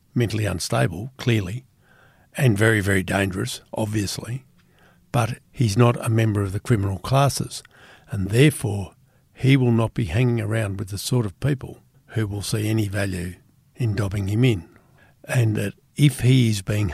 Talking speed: 160 wpm